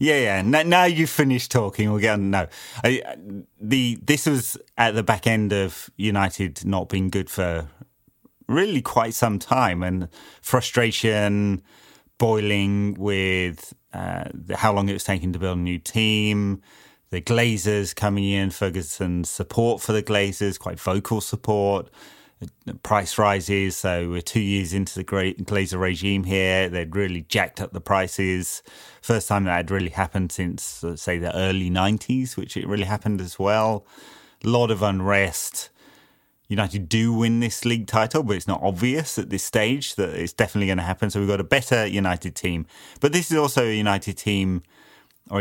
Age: 30-49